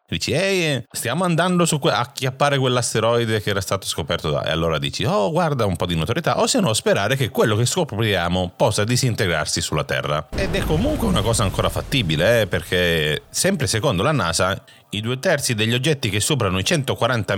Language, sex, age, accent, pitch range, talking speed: Italian, male, 30-49, native, 95-145 Hz, 195 wpm